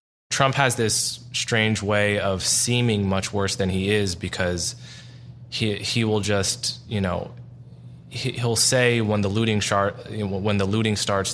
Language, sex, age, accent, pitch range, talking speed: English, male, 20-39, American, 95-120 Hz, 165 wpm